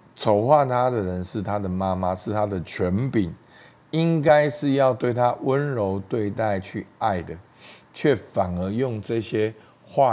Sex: male